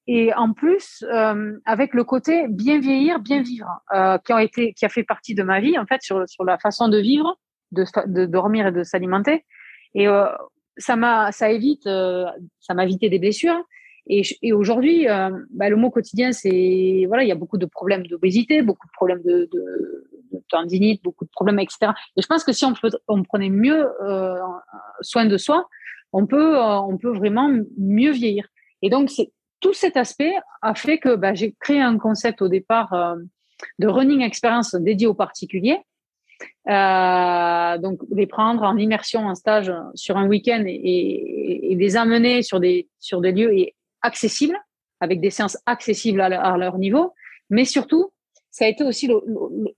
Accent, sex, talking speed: French, female, 190 wpm